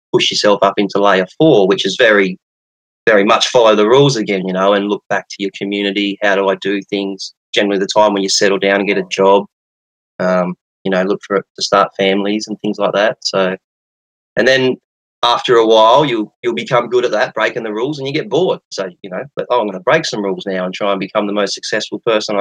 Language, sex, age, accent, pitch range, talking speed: English, male, 20-39, Australian, 95-105 Hz, 240 wpm